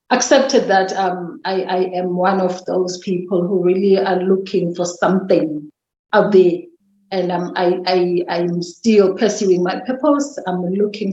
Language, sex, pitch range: English, female, 185-225 Hz